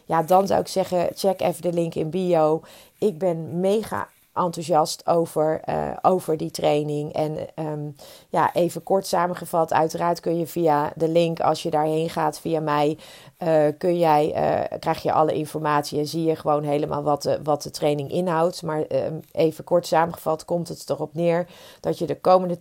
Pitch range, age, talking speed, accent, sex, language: 160-185 Hz, 40-59, 185 wpm, Dutch, female, Dutch